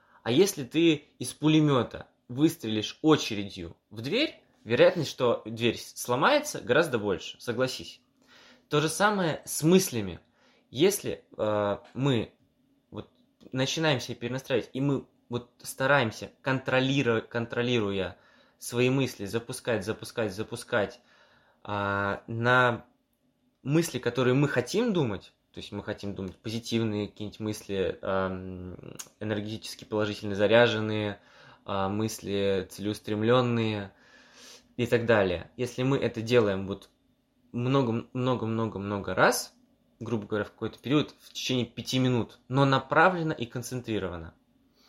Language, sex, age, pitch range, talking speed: Russian, male, 20-39, 105-130 Hz, 110 wpm